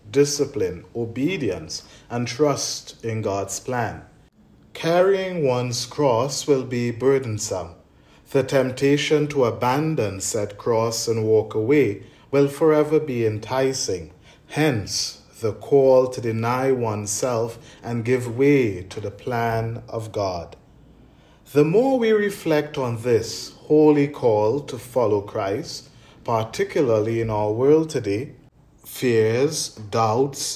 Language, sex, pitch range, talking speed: English, male, 115-150 Hz, 115 wpm